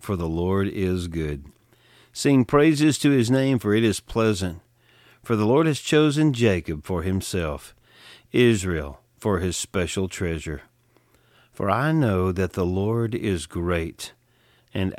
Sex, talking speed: male, 145 wpm